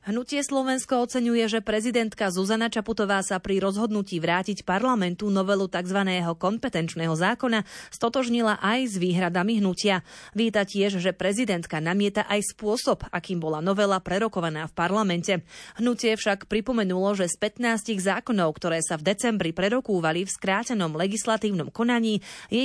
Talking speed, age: 135 wpm, 30-49